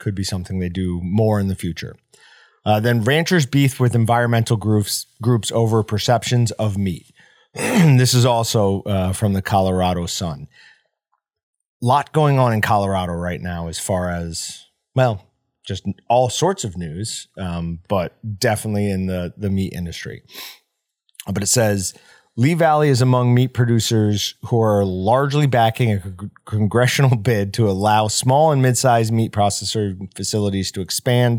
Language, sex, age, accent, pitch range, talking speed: English, male, 30-49, American, 100-125 Hz, 155 wpm